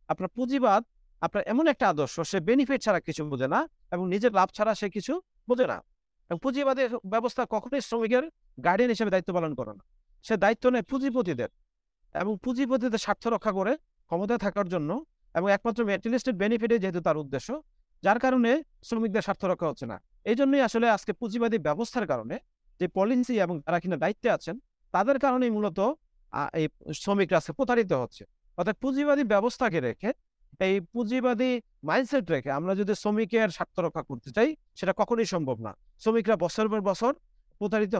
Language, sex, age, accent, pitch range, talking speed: English, male, 50-69, Indian, 175-245 Hz, 125 wpm